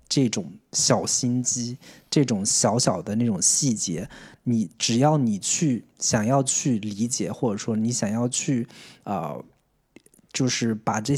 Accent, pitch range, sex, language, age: native, 115-145 Hz, male, Chinese, 20-39